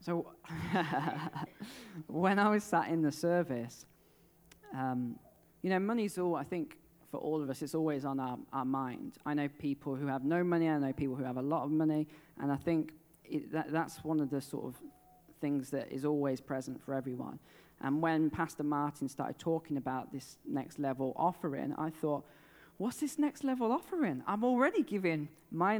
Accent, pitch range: British, 140-170 Hz